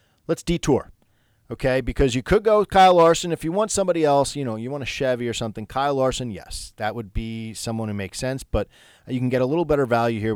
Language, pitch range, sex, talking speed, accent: English, 110-140 Hz, male, 245 wpm, American